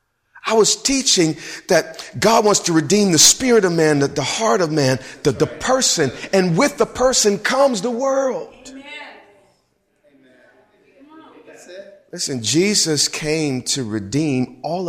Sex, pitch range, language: male, 150-225 Hz, English